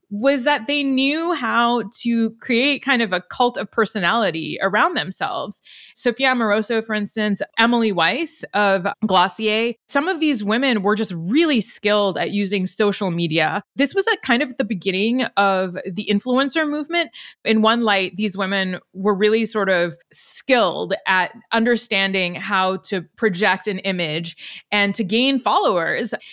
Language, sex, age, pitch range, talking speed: English, female, 20-39, 190-250 Hz, 155 wpm